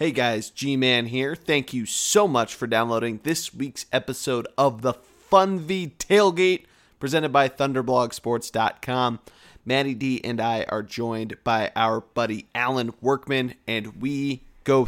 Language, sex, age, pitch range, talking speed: English, male, 30-49, 115-140 Hz, 140 wpm